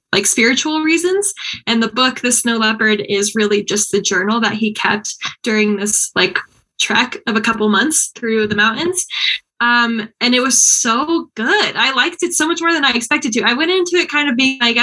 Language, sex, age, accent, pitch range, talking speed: English, female, 10-29, American, 215-280 Hz, 210 wpm